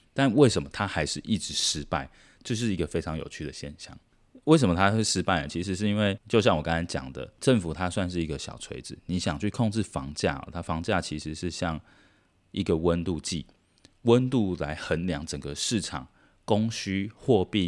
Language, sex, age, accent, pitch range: Chinese, male, 20-39, native, 75-100 Hz